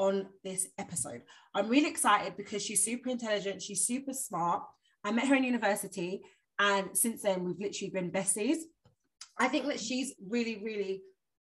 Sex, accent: female, British